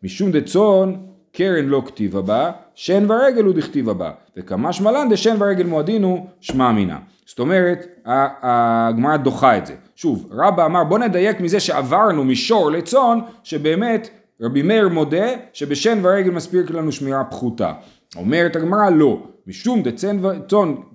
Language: Hebrew